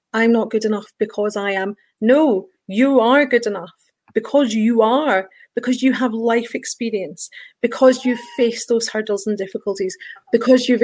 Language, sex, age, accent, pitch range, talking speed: English, female, 30-49, British, 215-250 Hz, 160 wpm